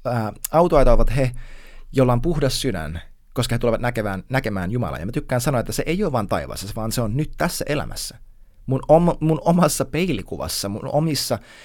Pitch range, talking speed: 105-155 Hz, 185 wpm